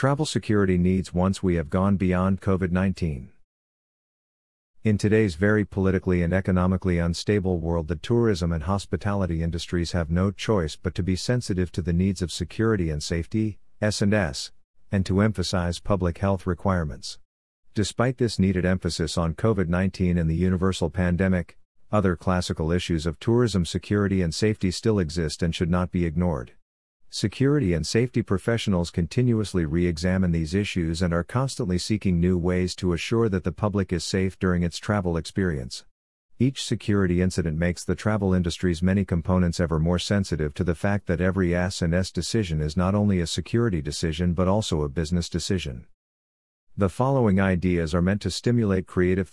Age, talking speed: 50-69, 160 wpm